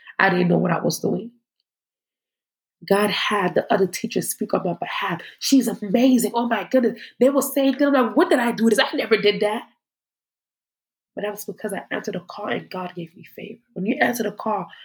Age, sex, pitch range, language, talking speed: 20-39, female, 200-245 Hz, English, 200 wpm